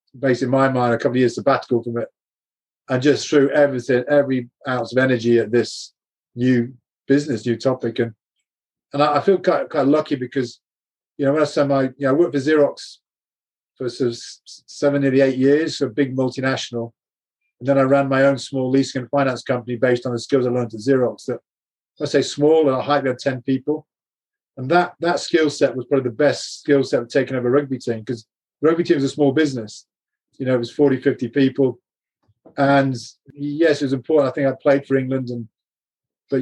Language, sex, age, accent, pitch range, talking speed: English, male, 40-59, British, 125-145 Hz, 215 wpm